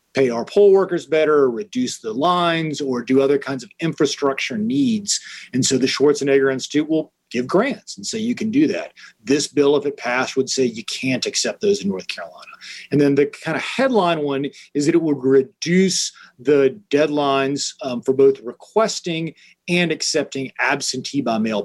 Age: 40-59